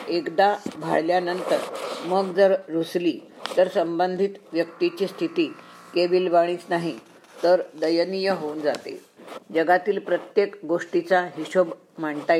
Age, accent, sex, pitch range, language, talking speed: 50-69, native, female, 170-195 Hz, Marathi, 95 wpm